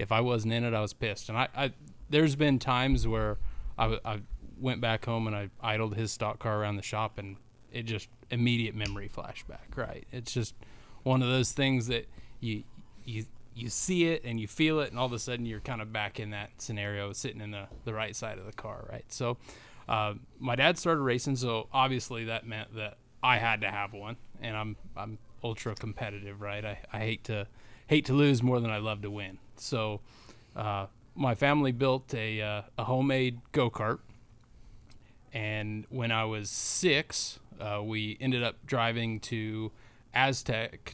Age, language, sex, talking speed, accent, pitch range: 20-39, English, male, 190 wpm, American, 110-120 Hz